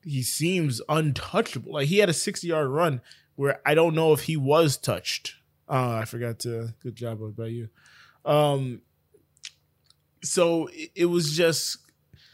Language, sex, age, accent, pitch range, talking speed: English, male, 20-39, American, 120-150 Hz, 150 wpm